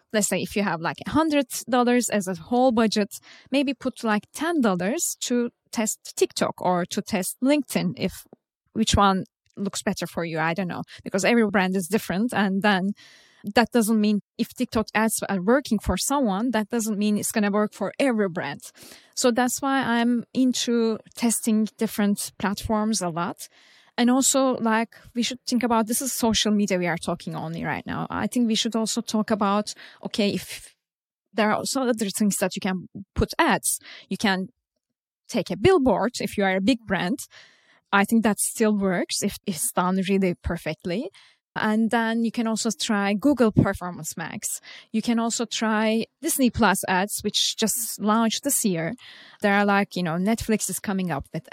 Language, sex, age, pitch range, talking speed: English, female, 20-39, 195-240 Hz, 185 wpm